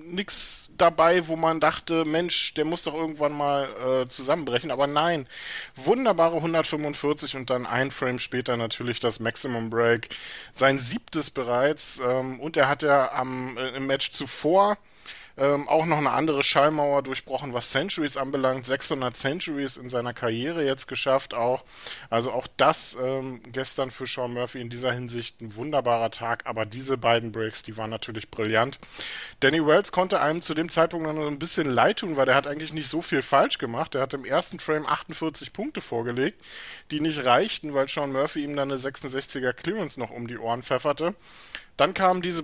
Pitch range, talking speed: 125-155 Hz, 180 wpm